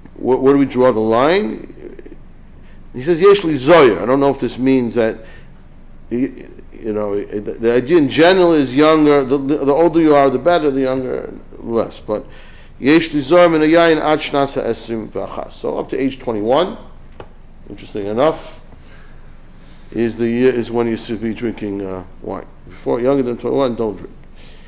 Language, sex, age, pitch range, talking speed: English, male, 60-79, 110-150 Hz, 145 wpm